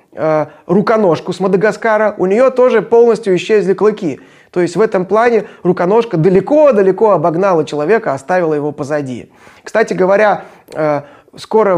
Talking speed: 120 wpm